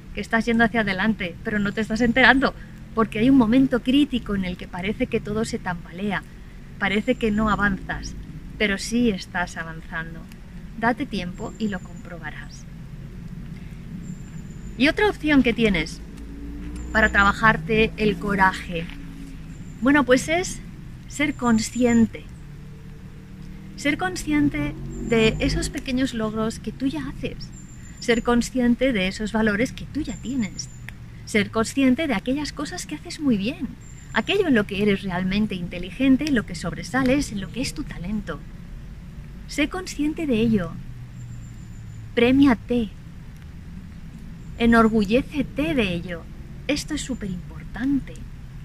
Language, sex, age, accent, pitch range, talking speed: Spanish, female, 20-39, Spanish, 175-245 Hz, 130 wpm